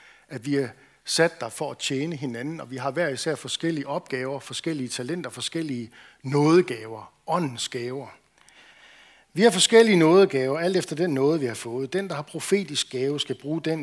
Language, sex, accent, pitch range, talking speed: Danish, male, native, 130-165 Hz, 175 wpm